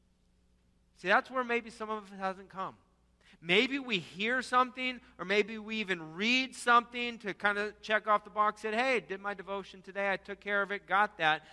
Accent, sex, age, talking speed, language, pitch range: American, male, 40-59, 210 wpm, English, 170-210 Hz